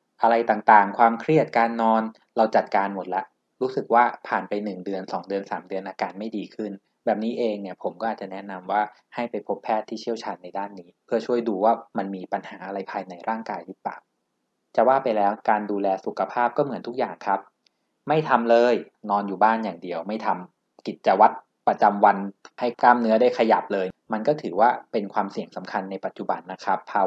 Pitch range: 100-115 Hz